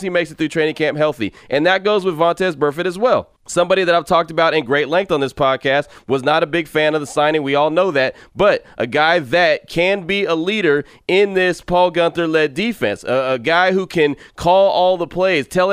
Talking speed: 235 wpm